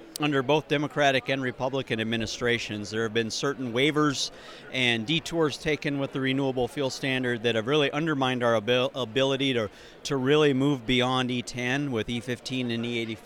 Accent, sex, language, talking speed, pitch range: American, male, English, 165 wpm, 120-140 Hz